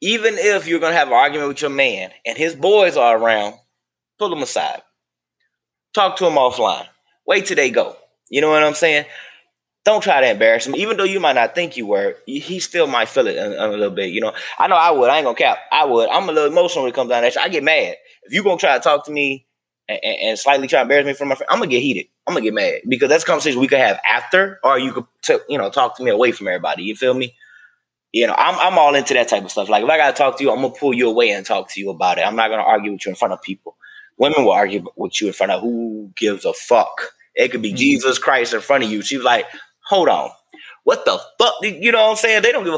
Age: 20-39